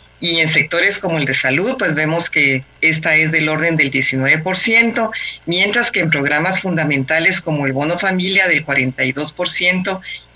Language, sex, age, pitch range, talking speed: Spanish, female, 40-59, 145-185 Hz, 155 wpm